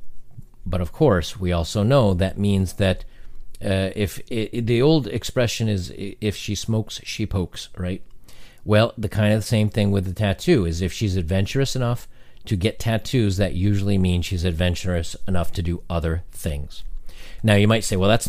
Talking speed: 175 wpm